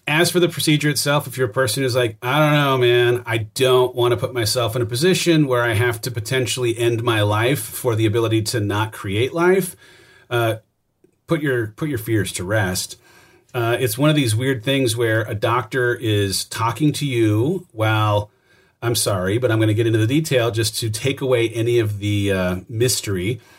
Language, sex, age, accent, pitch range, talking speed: English, male, 40-59, American, 110-135 Hz, 205 wpm